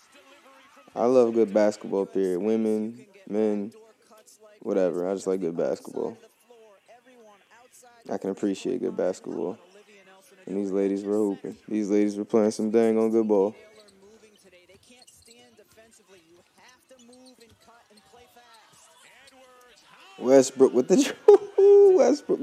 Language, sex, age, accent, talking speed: English, male, 20-39, American, 90 wpm